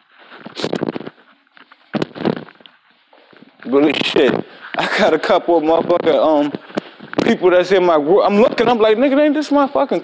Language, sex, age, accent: English, male, 20-39, American